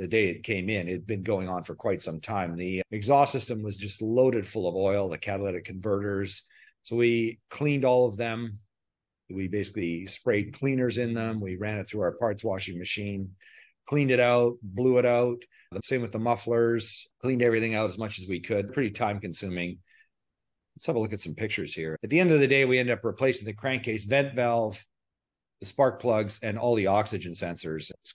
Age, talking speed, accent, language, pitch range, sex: 40-59, 210 wpm, American, English, 100-125 Hz, male